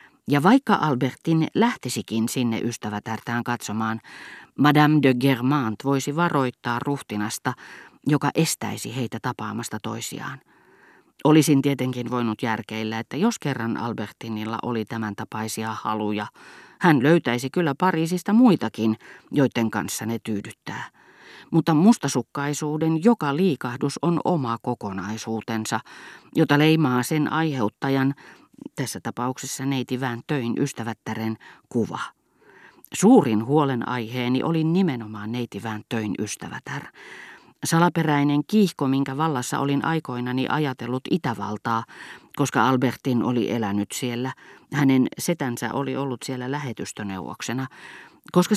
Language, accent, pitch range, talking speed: Finnish, native, 115-150 Hz, 105 wpm